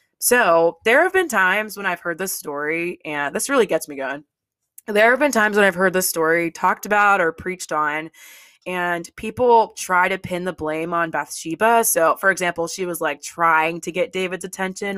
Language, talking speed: English, 200 wpm